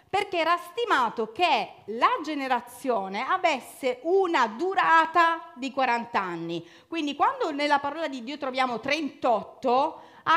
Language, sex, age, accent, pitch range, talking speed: Italian, female, 40-59, native, 200-330 Hz, 120 wpm